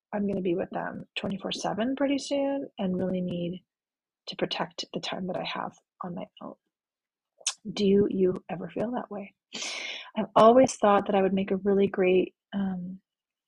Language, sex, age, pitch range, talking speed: English, female, 30-49, 185-245 Hz, 180 wpm